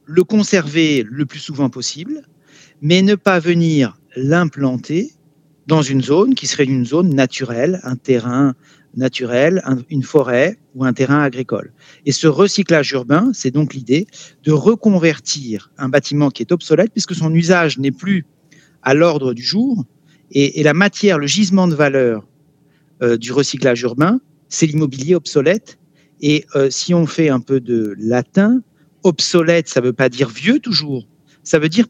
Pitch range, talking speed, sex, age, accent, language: 130-175 Hz, 155 wpm, male, 50-69, French, French